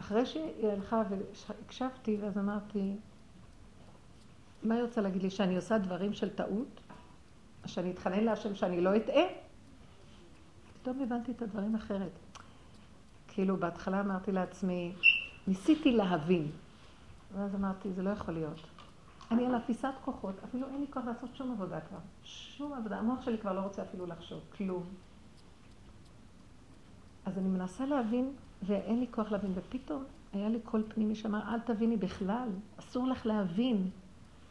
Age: 60-79